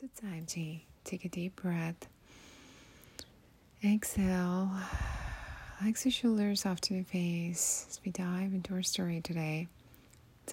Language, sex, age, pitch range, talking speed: English, female, 30-49, 145-190 Hz, 125 wpm